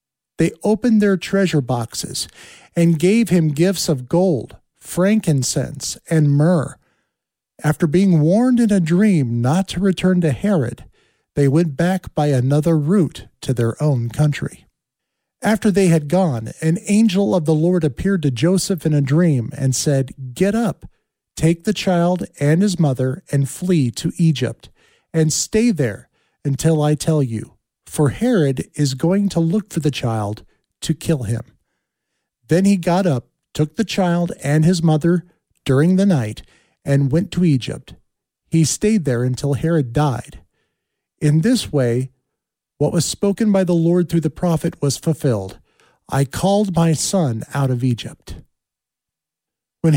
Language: English